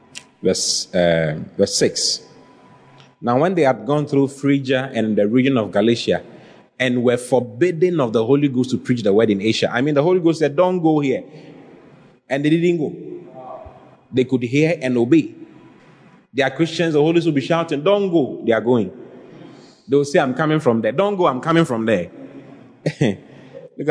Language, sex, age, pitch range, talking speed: English, male, 30-49, 115-145 Hz, 190 wpm